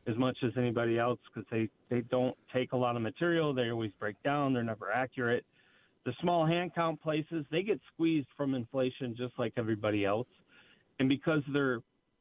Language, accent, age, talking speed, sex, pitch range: English, American, 40-59, 185 wpm, male, 115-145 Hz